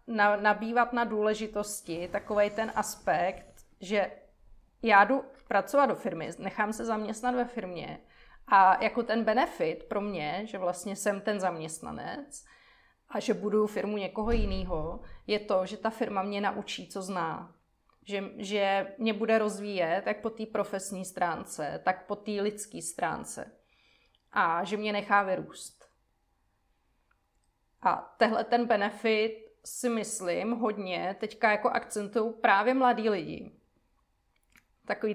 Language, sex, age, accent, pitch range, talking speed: Czech, female, 30-49, native, 195-230 Hz, 135 wpm